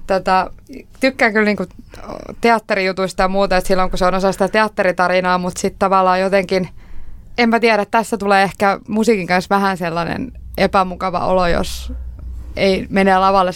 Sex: female